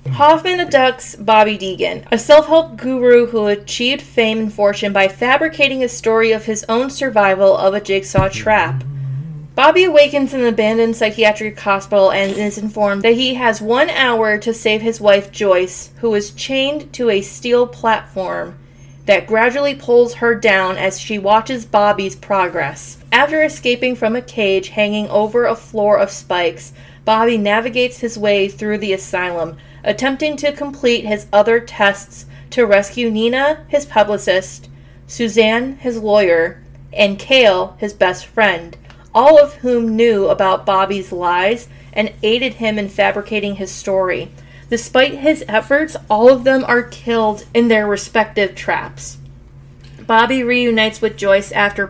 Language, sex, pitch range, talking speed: English, female, 195-240 Hz, 150 wpm